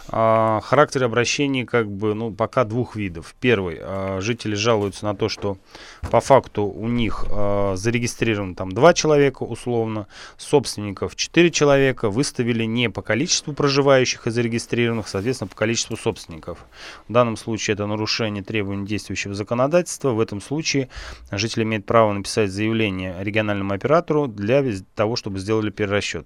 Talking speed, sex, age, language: 145 wpm, male, 20-39, Russian